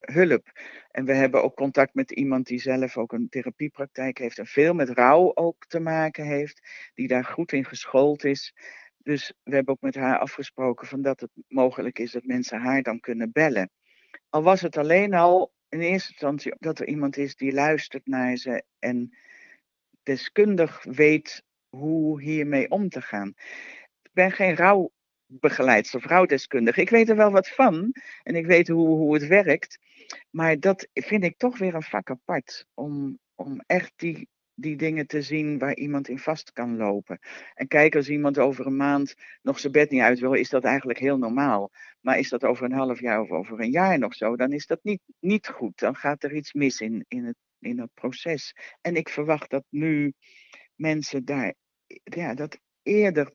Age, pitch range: 60-79, 130-165 Hz